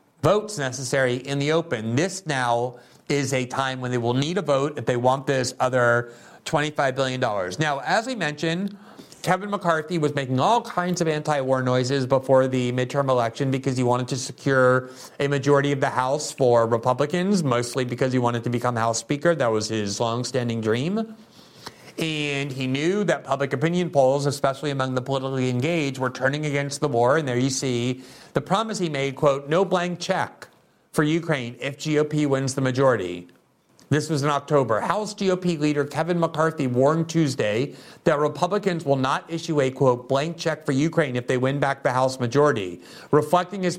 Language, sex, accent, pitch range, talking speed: English, male, American, 130-160 Hz, 180 wpm